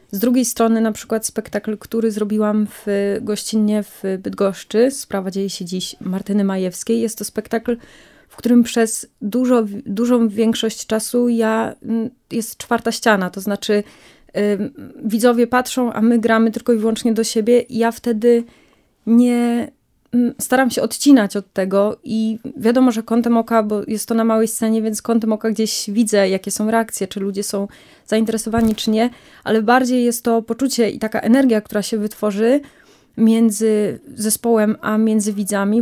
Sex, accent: female, native